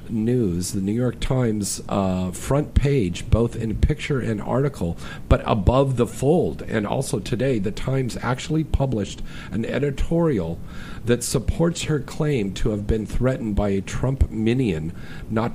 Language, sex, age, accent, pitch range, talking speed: English, male, 50-69, American, 95-120 Hz, 150 wpm